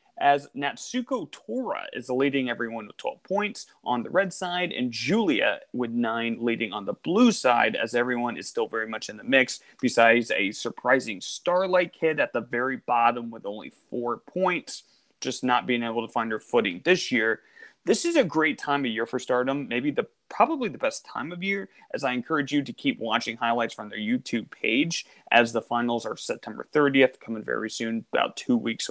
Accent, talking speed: American, 195 wpm